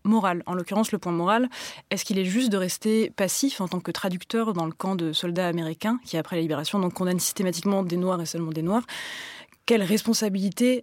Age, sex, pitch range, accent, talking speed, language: 20-39, female, 180-225 Hz, French, 205 wpm, French